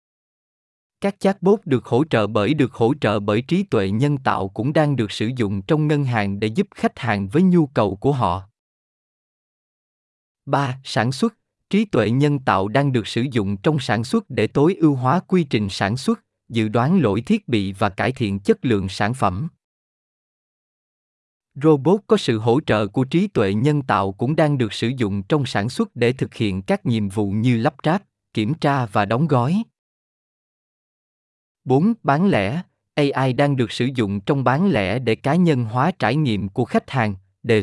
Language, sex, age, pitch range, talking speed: Vietnamese, male, 20-39, 105-150 Hz, 190 wpm